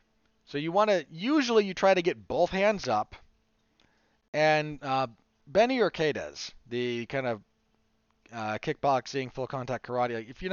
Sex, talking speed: male, 150 wpm